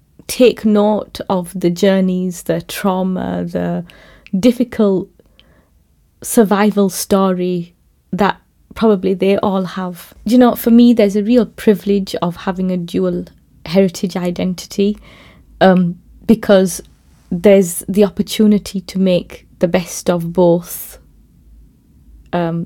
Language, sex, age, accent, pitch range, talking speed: English, female, 20-39, British, 175-205 Hz, 110 wpm